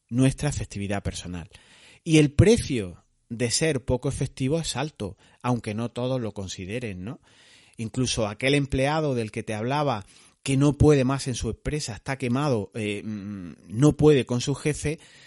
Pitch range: 115-150 Hz